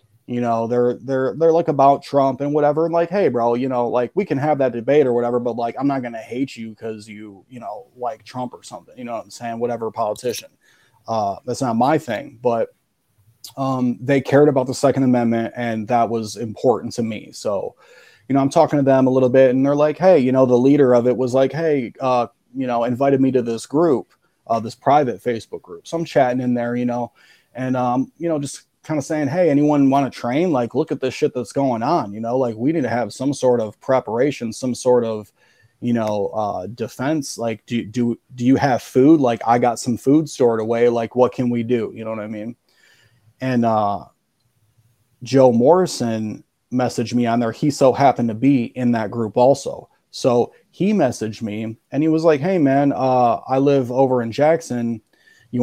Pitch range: 115-140 Hz